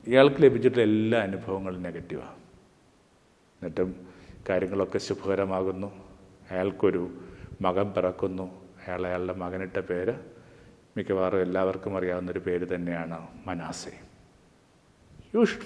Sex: male